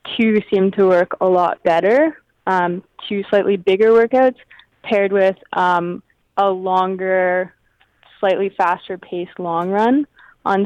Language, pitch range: English, 180-215 Hz